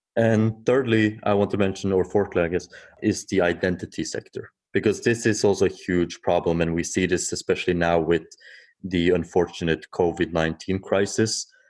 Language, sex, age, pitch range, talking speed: English, male, 30-49, 85-110 Hz, 165 wpm